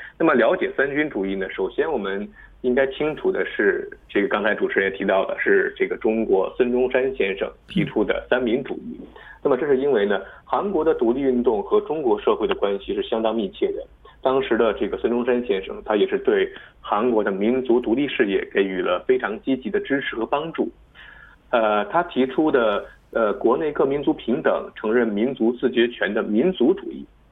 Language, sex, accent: Korean, male, Chinese